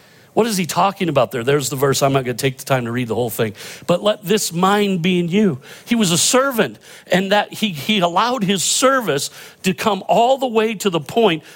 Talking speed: 245 wpm